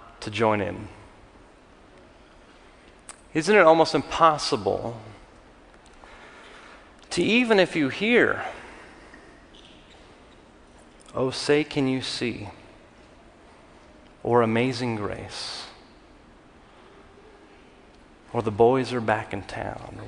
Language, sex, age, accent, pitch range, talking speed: English, male, 30-49, American, 120-175 Hz, 85 wpm